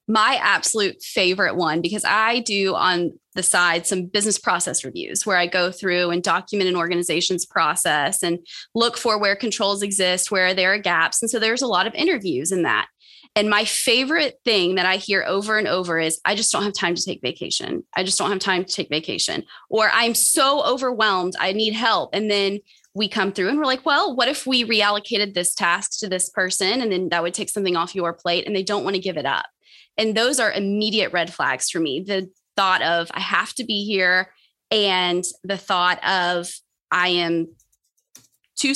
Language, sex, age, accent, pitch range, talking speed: English, female, 20-39, American, 180-220 Hz, 205 wpm